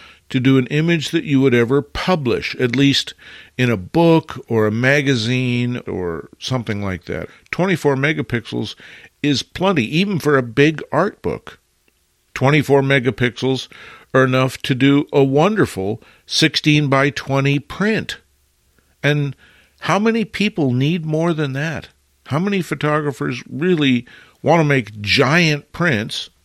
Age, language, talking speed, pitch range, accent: 50-69, English, 135 wpm, 115-150 Hz, American